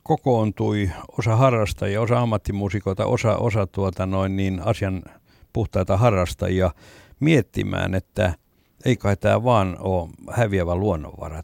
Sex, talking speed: male, 115 wpm